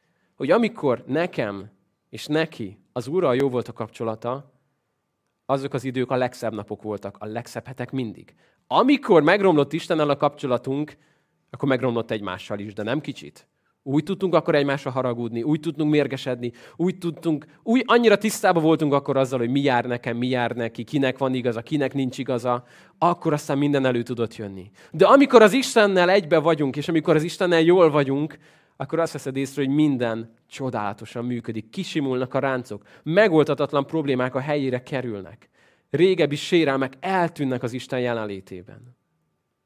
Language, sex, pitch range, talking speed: Hungarian, male, 120-150 Hz, 155 wpm